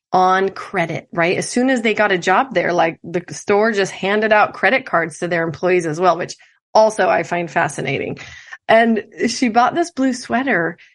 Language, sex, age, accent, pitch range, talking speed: English, female, 30-49, American, 180-235 Hz, 190 wpm